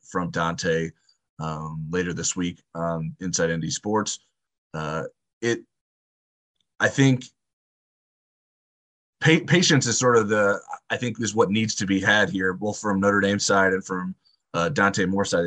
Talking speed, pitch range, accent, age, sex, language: 155 wpm, 95-110 Hz, American, 20-39, male, English